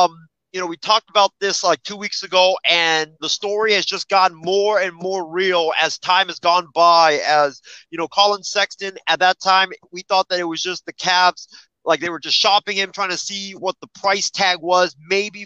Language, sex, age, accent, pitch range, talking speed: English, male, 30-49, American, 165-195 Hz, 220 wpm